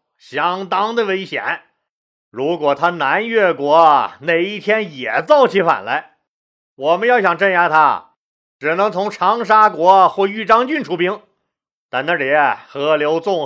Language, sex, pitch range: Chinese, male, 160-225 Hz